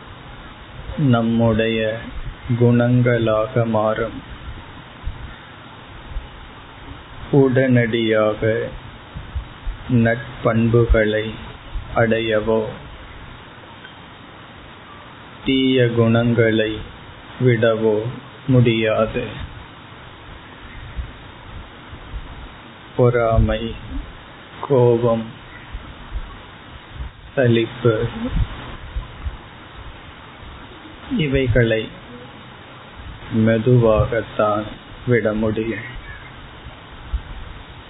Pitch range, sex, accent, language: 110-120 Hz, male, native, Tamil